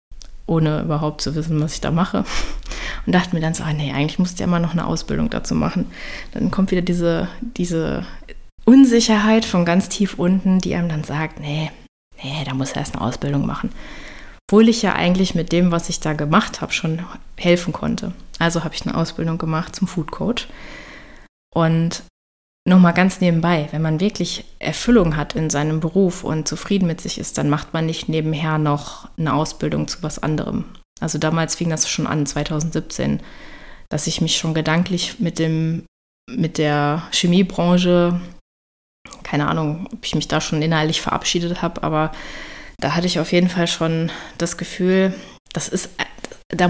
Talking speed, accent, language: 175 wpm, German, German